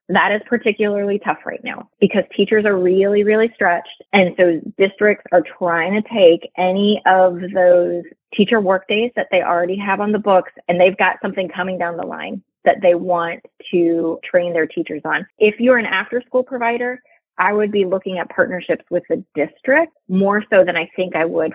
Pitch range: 170-215 Hz